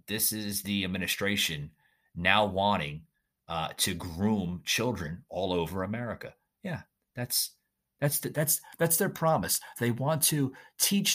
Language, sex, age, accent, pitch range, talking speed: English, male, 30-49, American, 95-135 Hz, 135 wpm